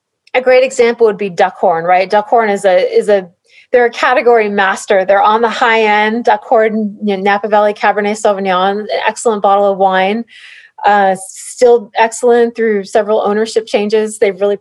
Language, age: English, 30-49